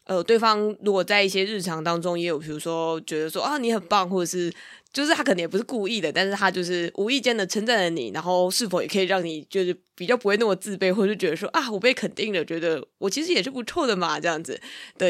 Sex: female